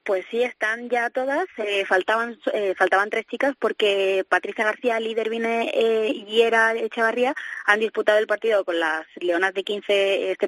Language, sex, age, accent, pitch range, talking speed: Spanish, female, 20-39, Spanish, 195-225 Hz, 170 wpm